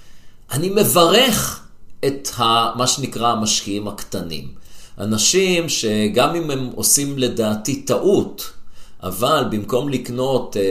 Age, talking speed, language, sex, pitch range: 50-69, 95 wpm, Hebrew, male, 105-170 Hz